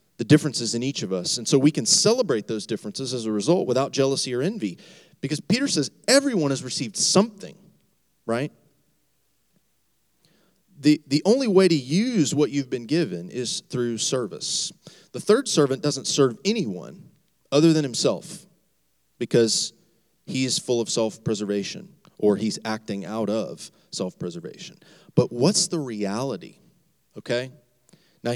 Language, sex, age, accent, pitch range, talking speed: English, male, 30-49, American, 110-155 Hz, 140 wpm